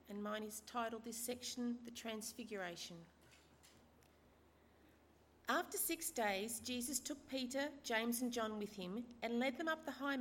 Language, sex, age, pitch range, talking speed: English, female, 40-59, 195-250 Hz, 145 wpm